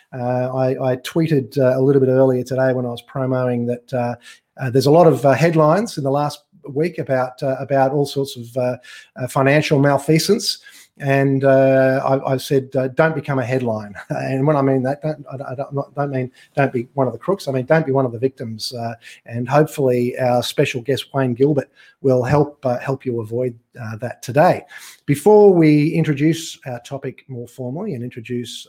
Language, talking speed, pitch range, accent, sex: English, 205 wpm, 125-150 Hz, Australian, male